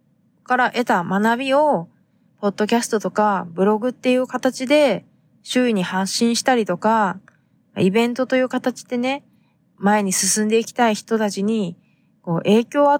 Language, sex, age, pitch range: Japanese, female, 20-39, 185-235 Hz